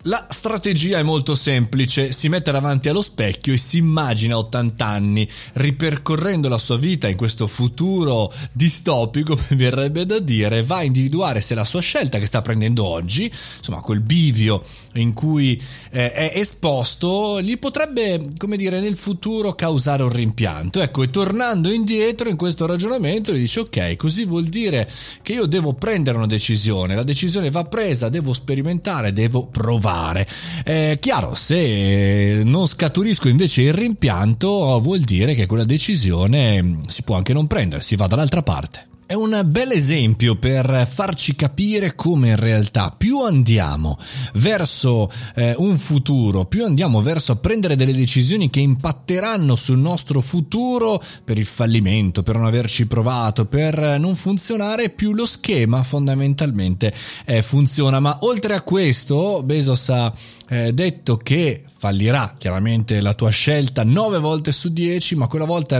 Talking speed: 150 wpm